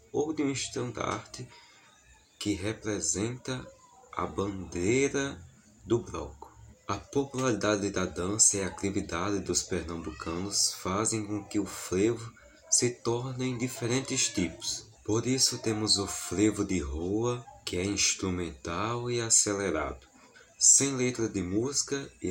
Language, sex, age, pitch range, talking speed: Portuguese, male, 20-39, 90-120 Hz, 125 wpm